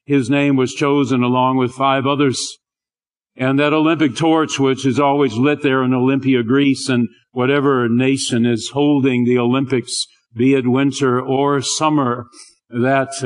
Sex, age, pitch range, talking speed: male, 50-69, 120-140 Hz, 150 wpm